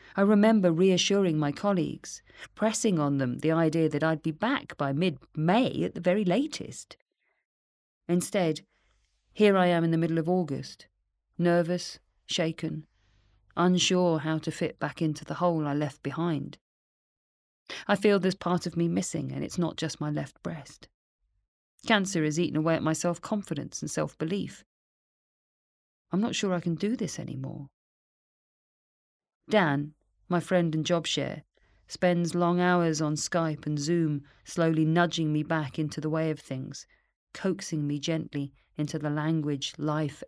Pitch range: 150-180 Hz